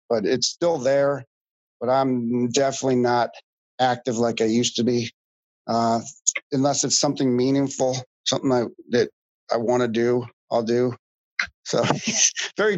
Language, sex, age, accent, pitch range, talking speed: English, male, 50-69, American, 120-145 Hz, 140 wpm